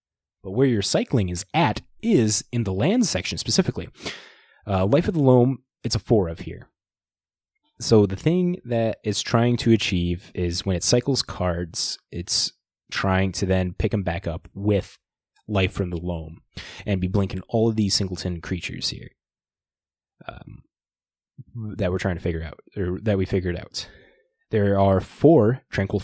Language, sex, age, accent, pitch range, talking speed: English, male, 20-39, American, 90-115 Hz, 170 wpm